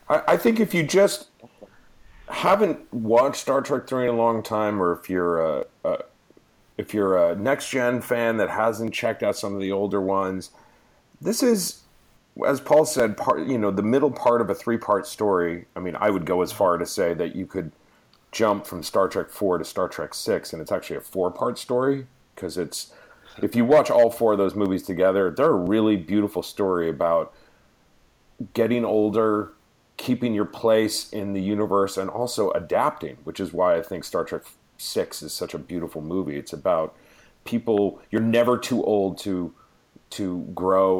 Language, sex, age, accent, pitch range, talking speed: English, male, 40-59, American, 90-120 Hz, 190 wpm